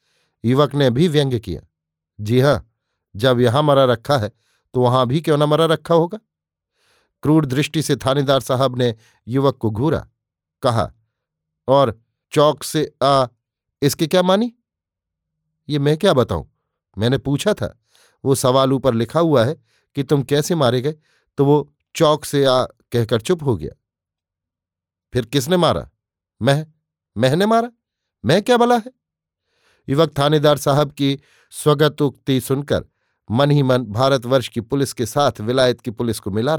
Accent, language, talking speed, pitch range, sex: native, Hindi, 150 wpm, 115-145 Hz, male